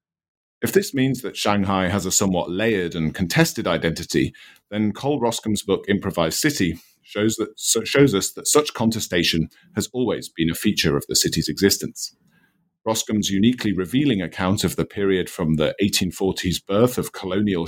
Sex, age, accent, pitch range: male, 40-59, British, 85-110 Hz